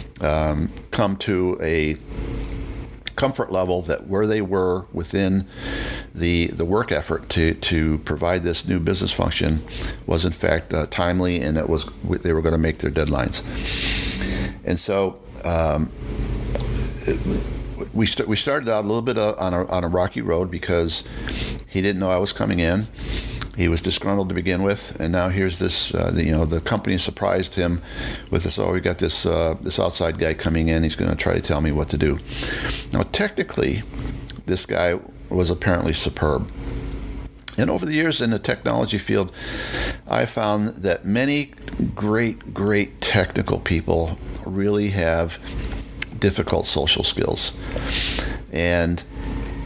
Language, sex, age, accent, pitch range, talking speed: English, male, 50-69, American, 80-100 Hz, 160 wpm